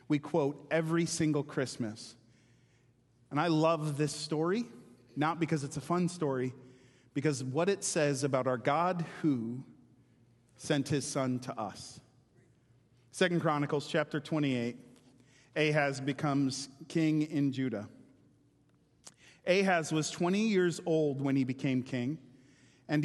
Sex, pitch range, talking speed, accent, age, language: male, 130-165 Hz, 125 wpm, American, 40-59, English